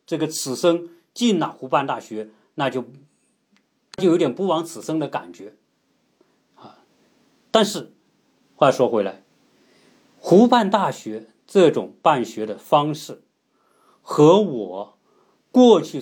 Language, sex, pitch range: Chinese, male, 125-190 Hz